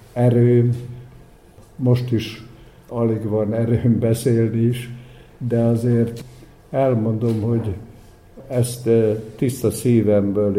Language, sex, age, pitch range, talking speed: Hungarian, male, 60-79, 110-120 Hz, 85 wpm